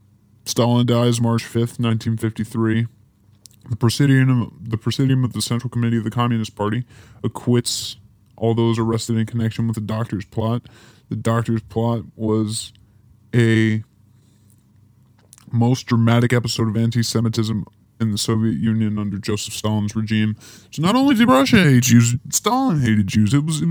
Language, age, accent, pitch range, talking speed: English, 10-29, American, 110-120 Hz, 140 wpm